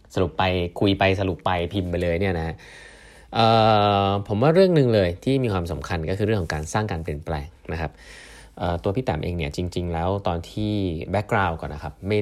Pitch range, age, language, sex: 80-105 Hz, 20-39, Thai, male